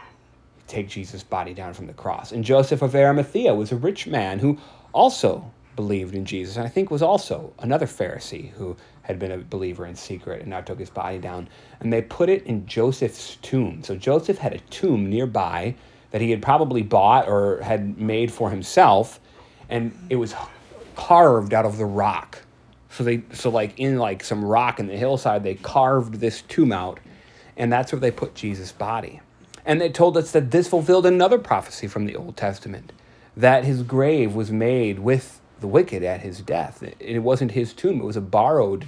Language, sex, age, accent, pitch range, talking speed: English, male, 30-49, American, 100-135 Hz, 195 wpm